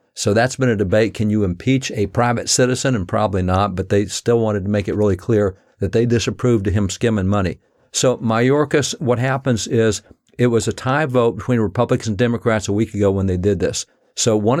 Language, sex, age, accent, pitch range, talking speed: English, male, 50-69, American, 105-125 Hz, 220 wpm